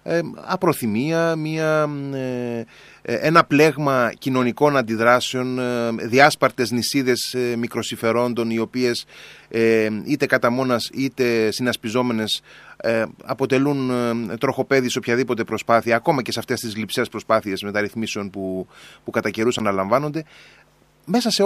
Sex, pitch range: male, 120-160 Hz